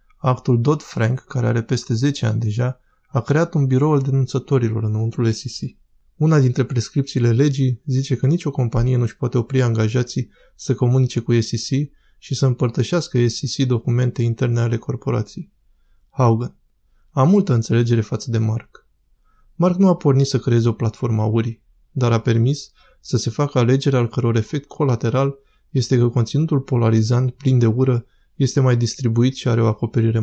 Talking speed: 165 wpm